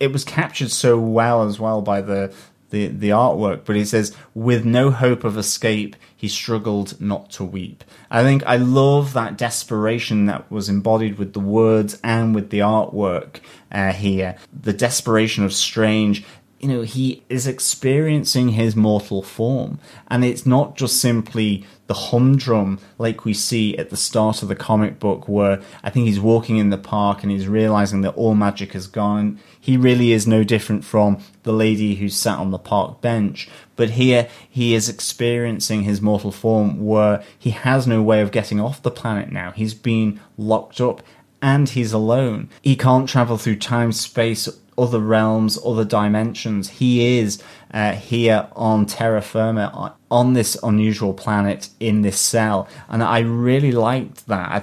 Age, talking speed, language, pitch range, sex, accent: 30-49, 175 wpm, English, 105-120 Hz, male, British